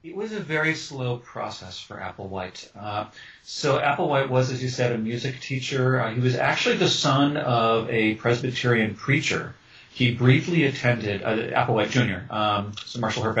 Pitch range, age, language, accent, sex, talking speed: 110-140 Hz, 40-59, English, American, male, 170 wpm